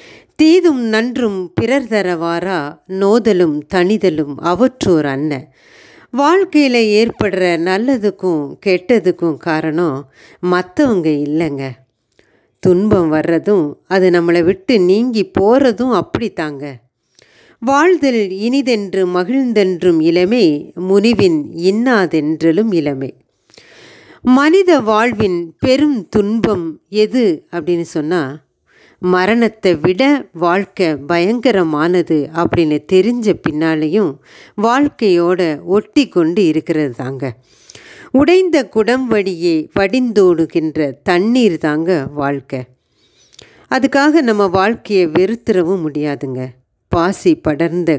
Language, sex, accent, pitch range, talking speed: Tamil, female, native, 155-225 Hz, 80 wpm